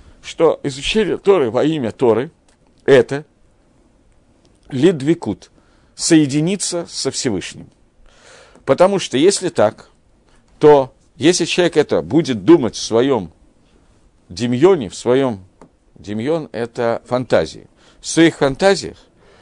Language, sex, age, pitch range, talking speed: Russian, male, 50-69, 125-175 Hz, 100 wpm